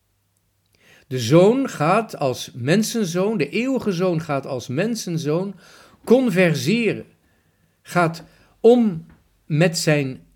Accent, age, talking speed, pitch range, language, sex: Dutch, 50-69, 95 wpm, 125-190 Hz, Dutch, male